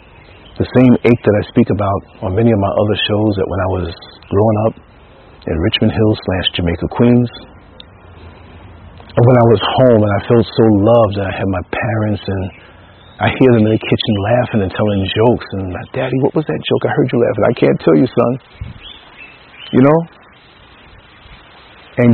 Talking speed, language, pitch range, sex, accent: 190 wpm, English, 90-110 Hz, male, American